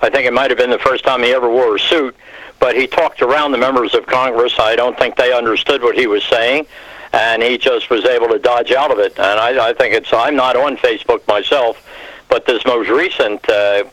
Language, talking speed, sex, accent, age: English, 240 wpm, male, American, 60-79